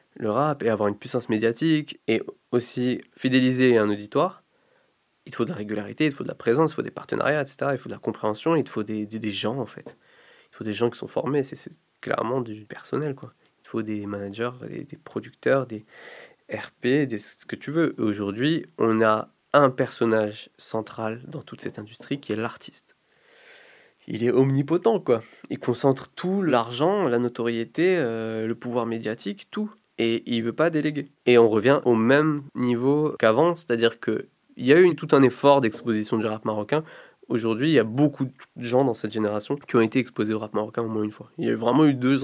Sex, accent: male, French